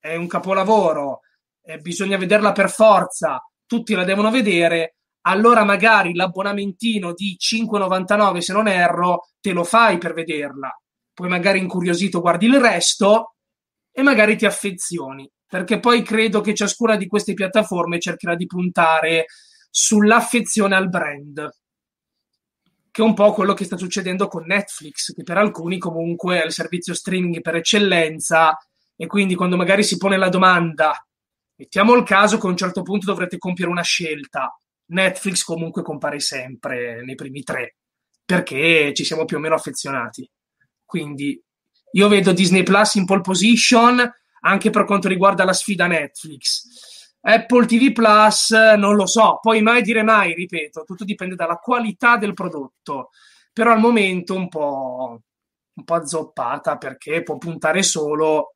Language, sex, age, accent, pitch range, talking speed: Italian, male, 20-39, native, 170-210 Hz, 150 wpm